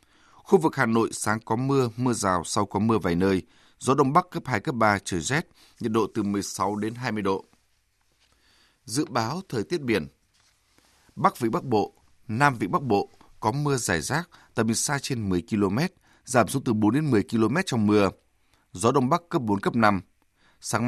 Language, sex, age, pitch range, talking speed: Vietnamese, male, 20-39, 100-130 Hz, 200 wpm